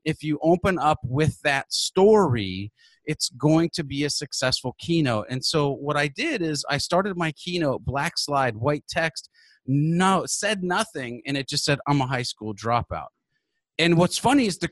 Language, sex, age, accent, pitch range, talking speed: English, male, 40-59, American, 130-165 Hz, 185 wpm